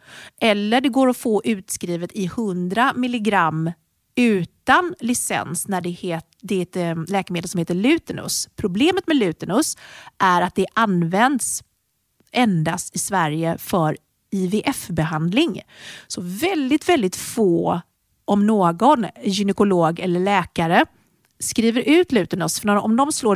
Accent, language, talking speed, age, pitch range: native, Swedish, 125 wpm, 30-49, 170-235 Hz